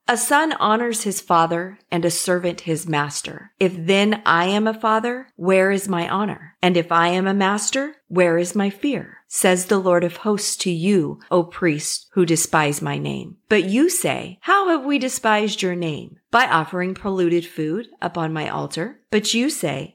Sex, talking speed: female, 185 wpm